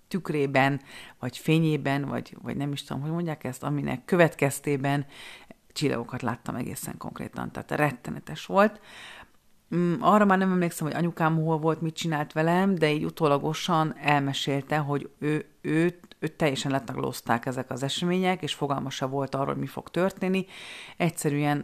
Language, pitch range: Hungarian, 140-175 Hz